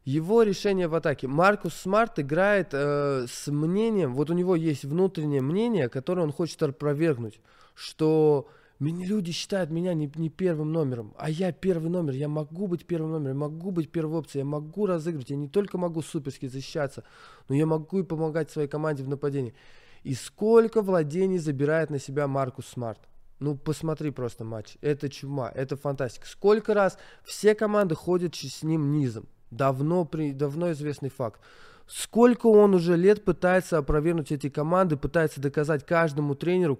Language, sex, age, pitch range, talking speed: Russian, male, 20-39, 140-180 Hz, 165 wpm